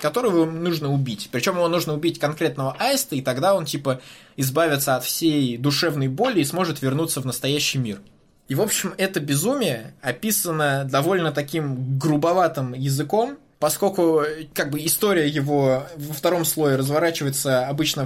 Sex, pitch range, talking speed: male, 130-160 Hz, 145 wpm